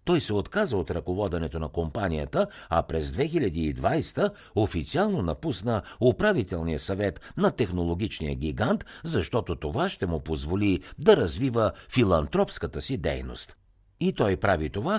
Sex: male